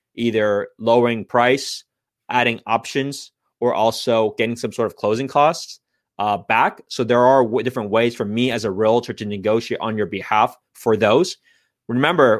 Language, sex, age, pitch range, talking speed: English, male, 20-39, 115-135 Hz, 160 wpm